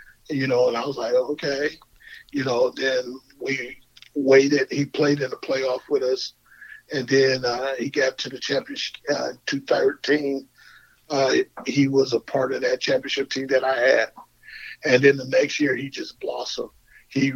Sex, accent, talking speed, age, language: male, American, 175 wpm, 50-69, English